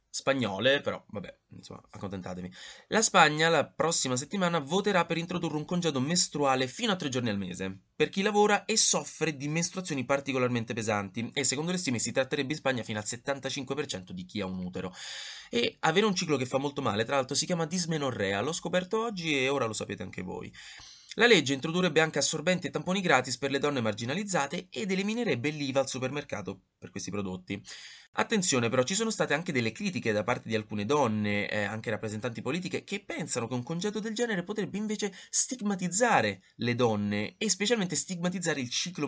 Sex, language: male, Italian